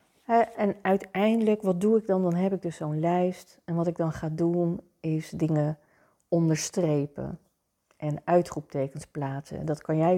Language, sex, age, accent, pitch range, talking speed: Dutch, female, 40-59, Dutch, 155-180 Hz, 160 wpm